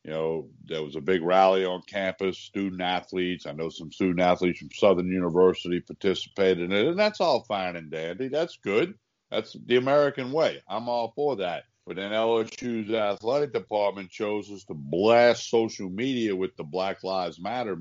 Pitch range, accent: 90-115 Hz, American